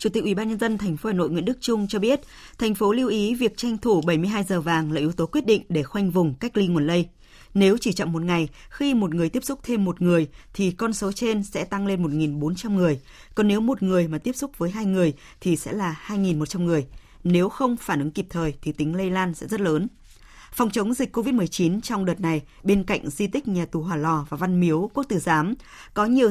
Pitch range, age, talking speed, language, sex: 165-215 Hz, 20-39, 240 wpm, Vietnamese, female